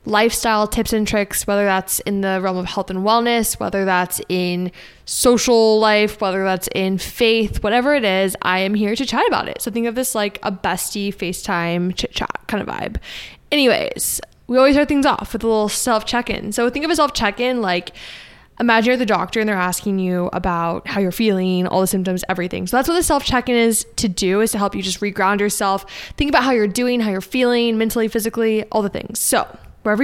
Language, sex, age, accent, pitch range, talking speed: English, female, 10-29, American, 195-235 Hz, 220 wpm